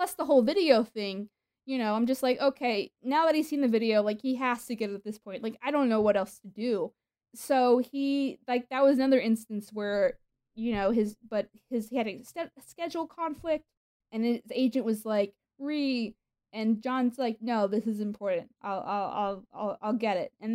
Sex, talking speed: female, 210 wpm